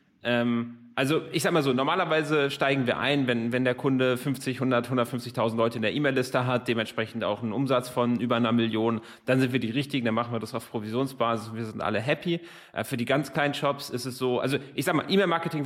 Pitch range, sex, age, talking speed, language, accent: 120-145 Hz, male, 30-49, 220 wpm, German, German